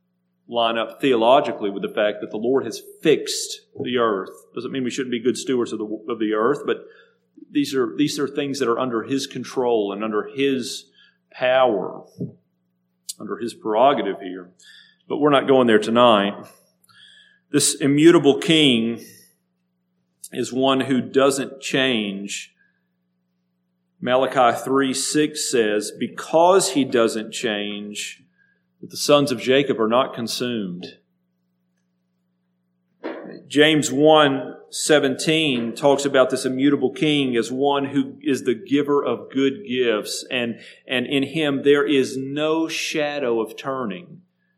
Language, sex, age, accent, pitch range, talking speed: English, male, 40-59, American, 100-145 Hz, 135 wpm